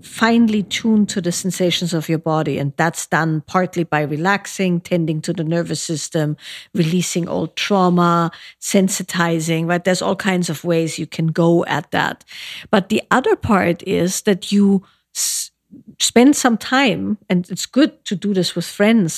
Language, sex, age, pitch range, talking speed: English, female, 50-69, 160-195 Hz, 165 wpm